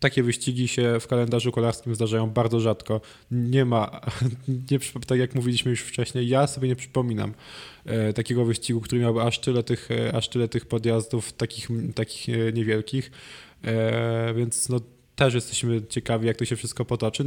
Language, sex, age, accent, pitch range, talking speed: Polish, male, 20-39, native, 115-125 Hz, 150 wpm